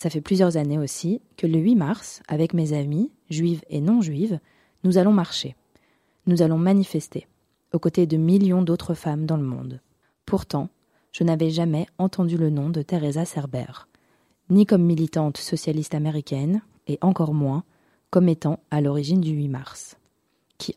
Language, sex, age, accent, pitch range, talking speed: French, female, 20-39, French, 150-190 Hz, 160 wpm